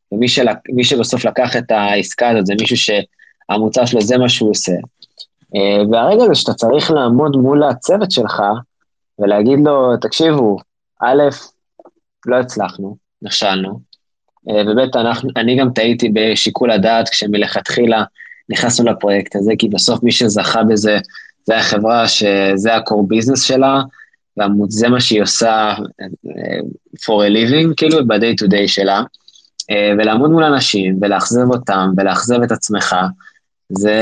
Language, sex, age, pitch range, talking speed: Hebrew, male, 20-39, 100-125 Hz, 135 wpm